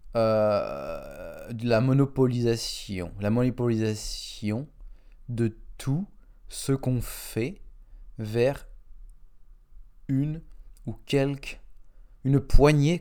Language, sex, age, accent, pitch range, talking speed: French, male, 20-39, French, 110-135 Hz, 80 wpm